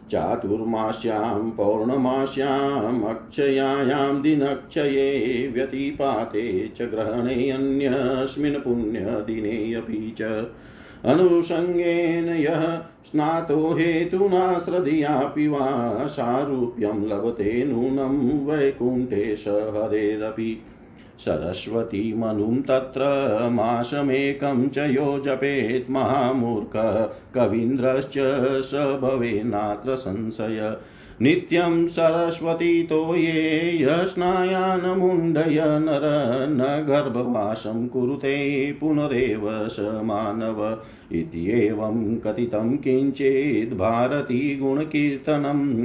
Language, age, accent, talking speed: Hindi, 50-69, native, 50 wpm